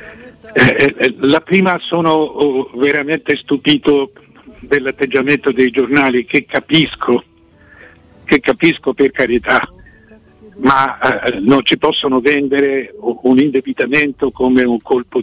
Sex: male